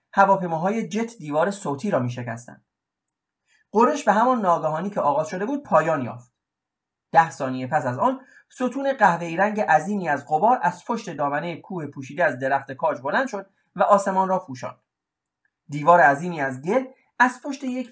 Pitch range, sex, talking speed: 155-225 Hz, male, 160 wpm